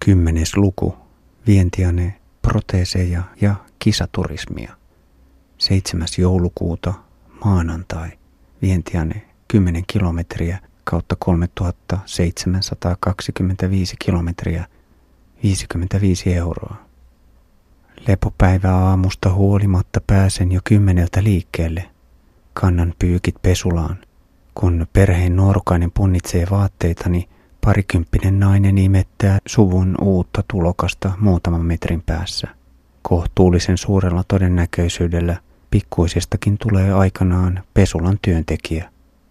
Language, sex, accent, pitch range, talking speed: Finnish, male, native, 85-100 Hz, 75 wpm